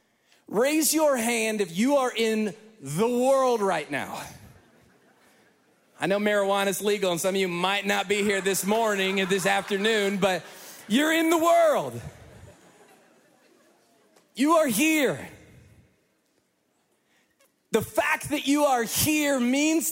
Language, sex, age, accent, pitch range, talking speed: English, male, 30-49, American, 195-265 Hz, 135 wpm